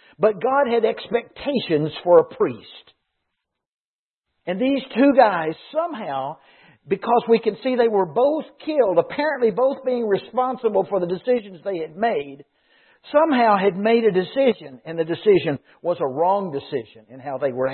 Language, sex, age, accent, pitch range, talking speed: English, male, 60-79, American, 160-255 Hz, 155 wpm